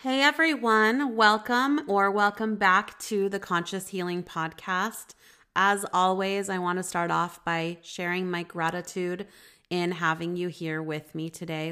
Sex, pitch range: female, 160-205 Hz